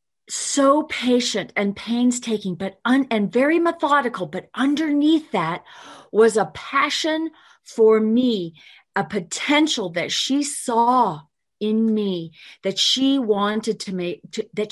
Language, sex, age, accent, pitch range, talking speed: English, female, 40-59, American, 195-245 Hz, 125 wpm